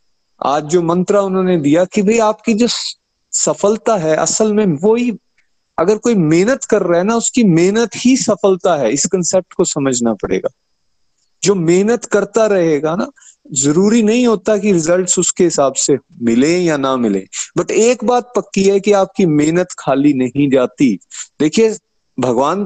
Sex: male